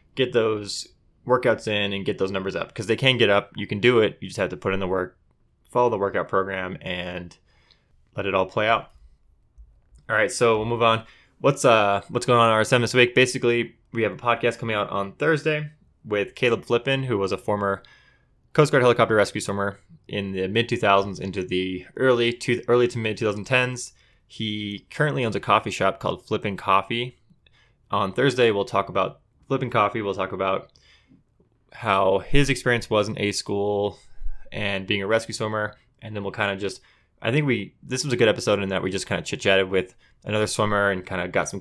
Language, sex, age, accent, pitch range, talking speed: English, male, 20-39, American, 95-120 Hz, 205 wpm